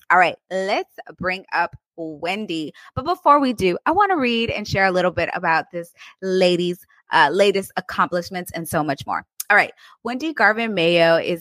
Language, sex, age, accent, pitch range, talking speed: English, female, 20-39, American, 175-230 Hz, 185 wpm